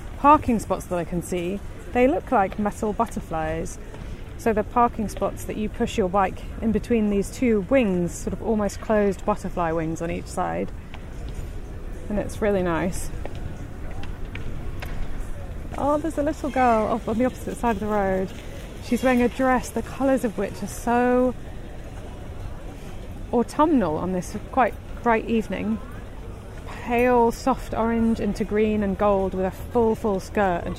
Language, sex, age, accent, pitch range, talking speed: English, female, 30-49, British, 165-225 Hz, 155 wpm